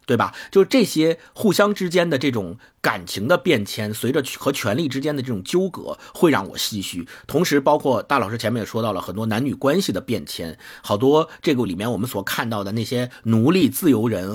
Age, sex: 50-69, male